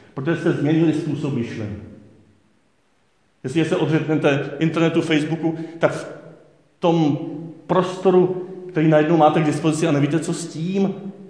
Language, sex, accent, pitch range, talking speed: Czech, male, native, 125-165 Hz, 125 wpm